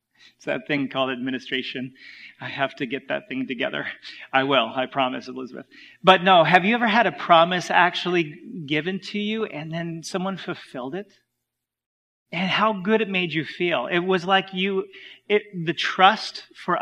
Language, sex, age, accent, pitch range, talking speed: English, male, 40-59, American, 140-180 Hz, 170 wpm